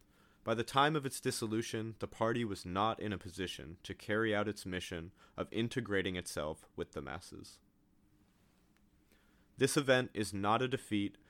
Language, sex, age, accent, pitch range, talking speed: English, male, 30-49, American, 90-105 Hz, 160 wpm